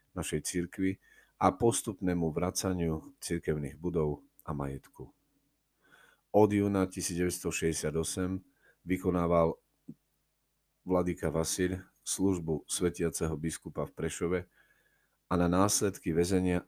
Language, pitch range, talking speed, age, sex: Slovak, 80-95 Hz, 85 wpm, 40-59, male